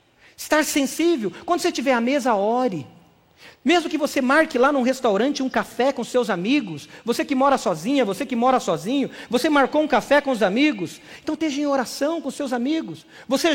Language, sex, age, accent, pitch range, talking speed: Portuguese, male, 50-69, Brazilian, 220-300 Hz, 190 wpm